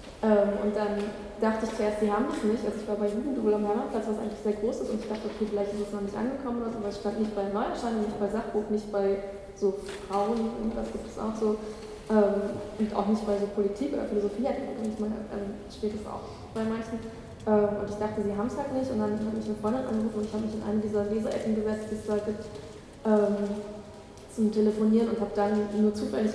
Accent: German